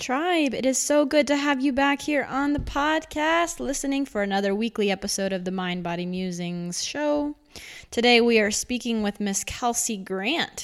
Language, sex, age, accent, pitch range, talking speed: English, female, 20-39, American, 180-250 Hz, 180 wpm